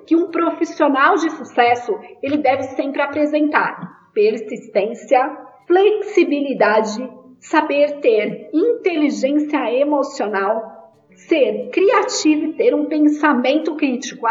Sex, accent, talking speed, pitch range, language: female, Brazilian, 90 wpm, 255-330 Hz, Portuguese